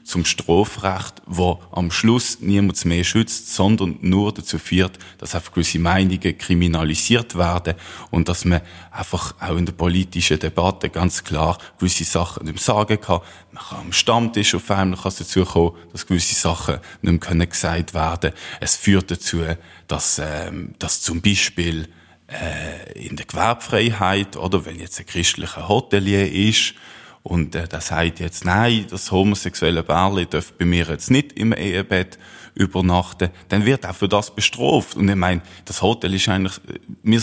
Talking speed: 165 wpm